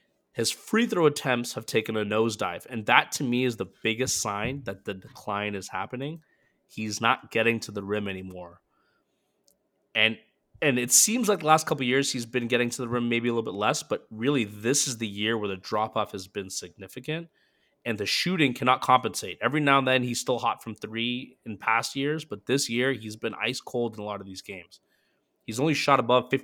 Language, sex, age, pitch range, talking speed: English, male, 20-39, 110-130 Hz, 215 wpm